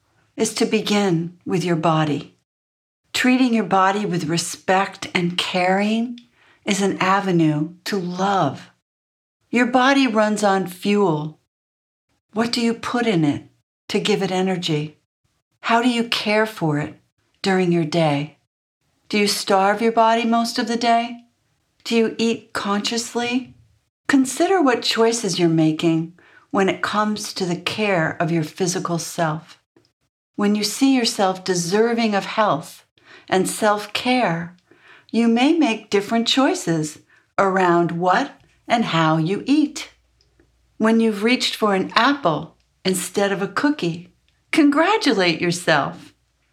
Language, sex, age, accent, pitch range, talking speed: English, female, 60-79, American, 170-230 Hz, 130 wpm